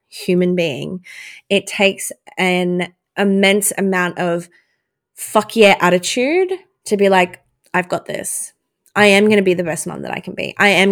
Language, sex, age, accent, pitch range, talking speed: English, female, 20-39, Australian, 180-215 Hz, 170 wpm